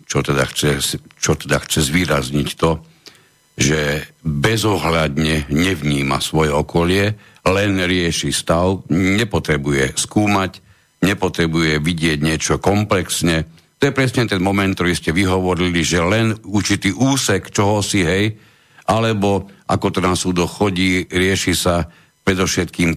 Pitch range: 80-100 Hz